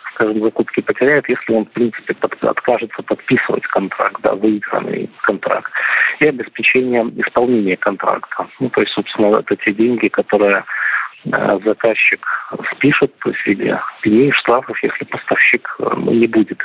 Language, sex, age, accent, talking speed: Russian, male, 50-69, native, 135 wpm